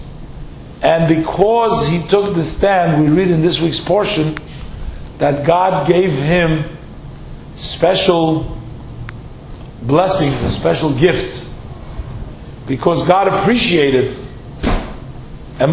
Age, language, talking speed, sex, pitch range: 50-69, English, 95 wpm, male, 155-195 Hz